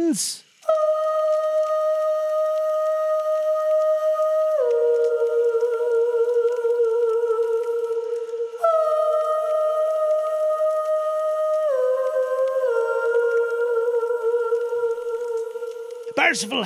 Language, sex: English, male